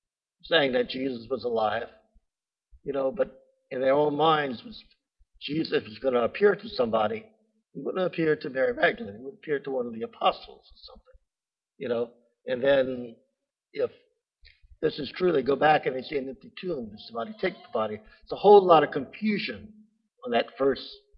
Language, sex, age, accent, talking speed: English, male, 60-79, American, 185 wpm